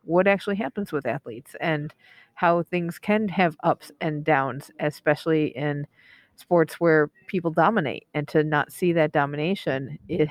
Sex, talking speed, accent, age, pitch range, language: female, 150 wpm, American, 50-69, 155-195 Hz, English